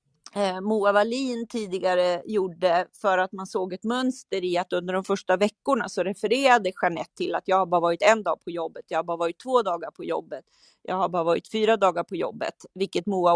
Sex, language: female, Swedish